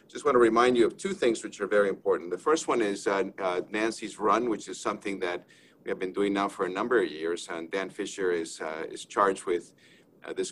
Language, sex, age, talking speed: English, male, 50-69, 245 wpm